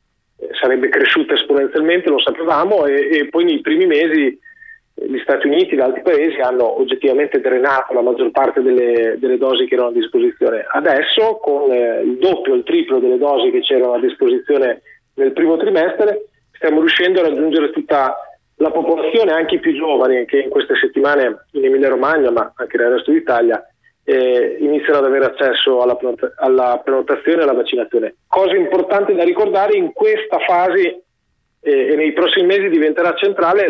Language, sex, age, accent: Italian, male, 30-49, native